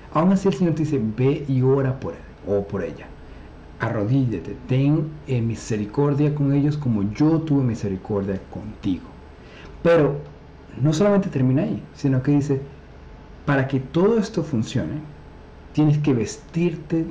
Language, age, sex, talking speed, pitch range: Spanish, 50-69, male, 140 wpm, 105-150 Hz